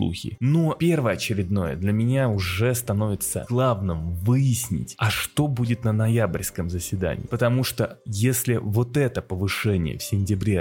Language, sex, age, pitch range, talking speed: Russian, male, 20-39, 95-120 Hz, 130 wpm